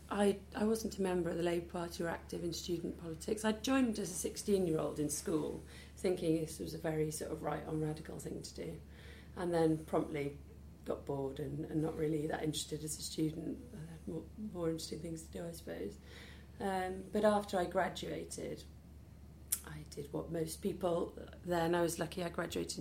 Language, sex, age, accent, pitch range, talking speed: English, female, 40-59, British, 155-185 Hz, 205 wpm